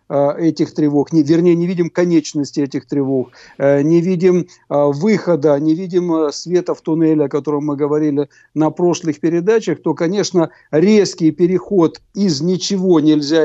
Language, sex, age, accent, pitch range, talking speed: Russian, male, 60-79, native, 155-190 Hz, 135 wpm